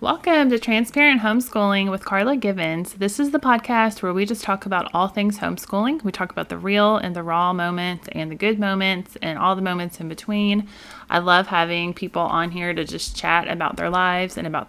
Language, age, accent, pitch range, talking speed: English, 30-49, American, 170-210 Hz, 215 wpm